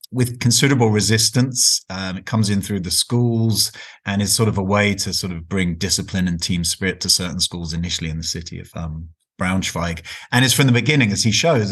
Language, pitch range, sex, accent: English, 90-110 Hz, male, British